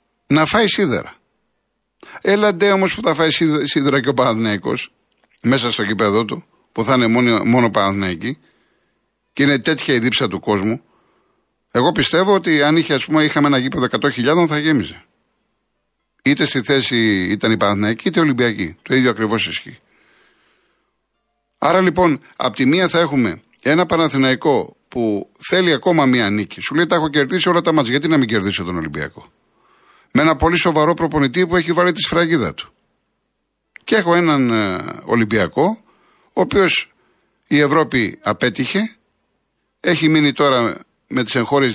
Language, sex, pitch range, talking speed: Greek, male, 120-175 Hz, 155 wpm